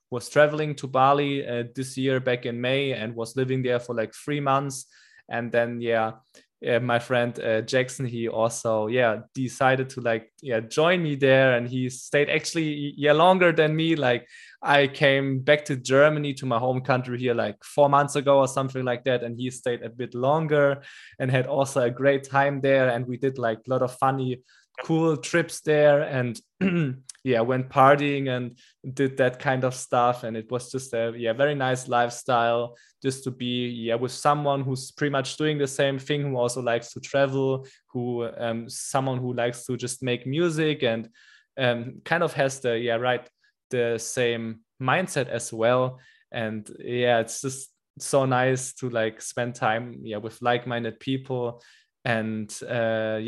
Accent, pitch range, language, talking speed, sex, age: German, 120-135 Hz, English, 180 wpm, male, 20-39